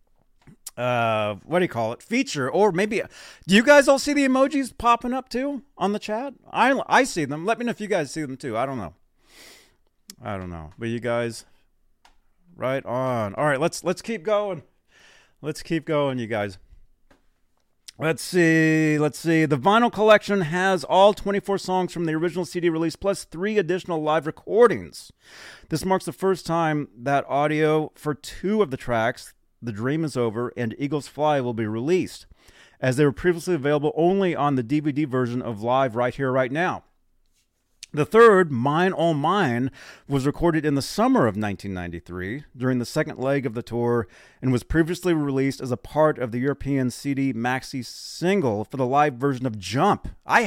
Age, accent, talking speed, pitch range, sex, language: 30-49, American, 185 wpm, 120-180 Hz, male, English